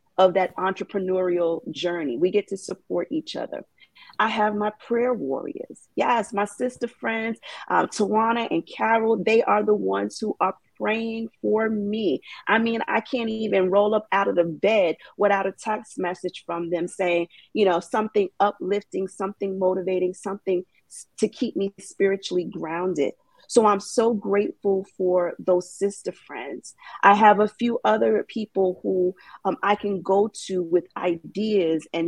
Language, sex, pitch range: English, female, 180-215 Hz